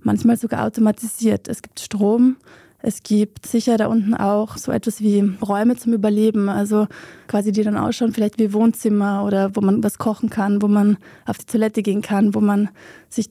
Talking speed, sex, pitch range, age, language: 190 wpm, female, 205-225 Hz, 20-39, German